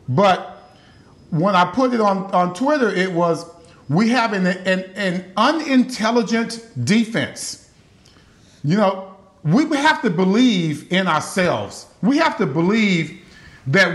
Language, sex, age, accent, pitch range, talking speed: English, male, 50-69, American, 155-230 Hz, 130 wpm